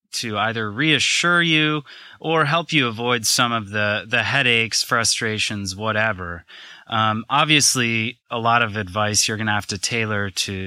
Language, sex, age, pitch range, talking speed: English, male, 20-39, 100-120 Hz, 155 wpm